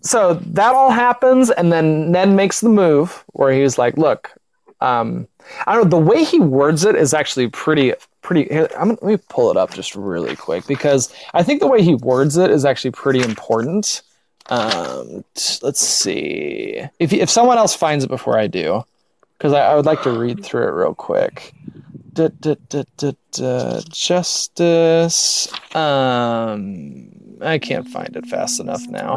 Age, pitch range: 20-39, 140-195 Hz